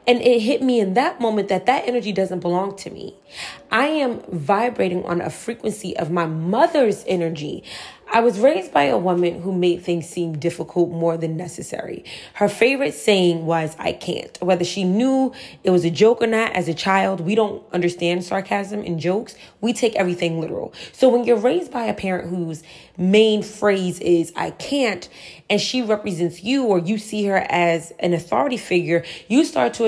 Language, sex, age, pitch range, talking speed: English, female, 20-39, 175-235 Hz, 190 wpm